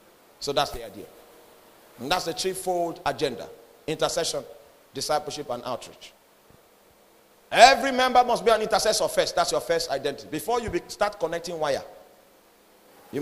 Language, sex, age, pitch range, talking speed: English, male, 40-59, 155-220 Hz, 140 wpm